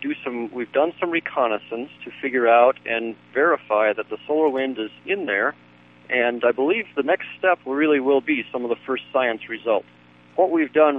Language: English